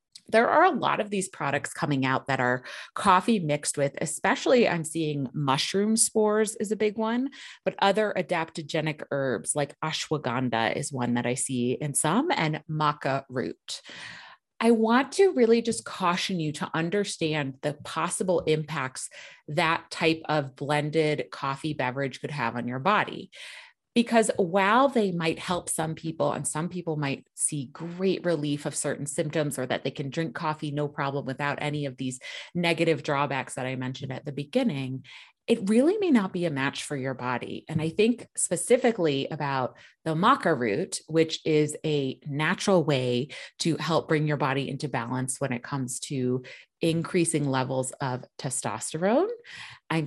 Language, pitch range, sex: English, 140-190 Hz, female